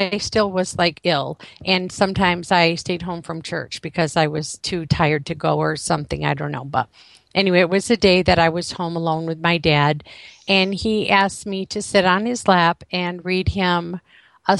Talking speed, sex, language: 210 wpm, female, English